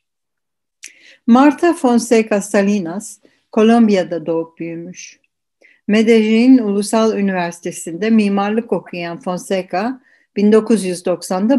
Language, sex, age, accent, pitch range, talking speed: Turkish, female, 60-79, native, 180-230 Hz, 65 wpm